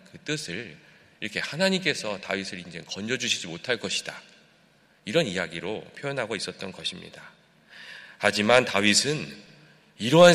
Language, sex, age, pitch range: Korean, male, 40-59, 95-145 Hz